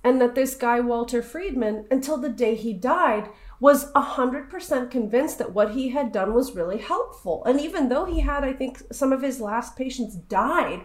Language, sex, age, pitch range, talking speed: English, female, 30-49, 220-275 Hz, 200 wpm